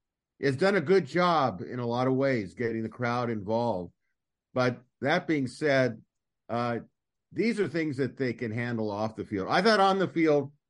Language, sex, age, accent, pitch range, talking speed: English, male, 50-69, American, 110-140 Hz, 190 wpm